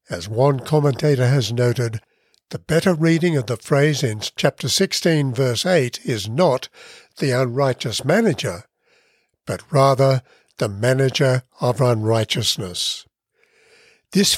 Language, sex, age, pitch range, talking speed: English, male, 60-79, 120-160 Hz, 115 wpm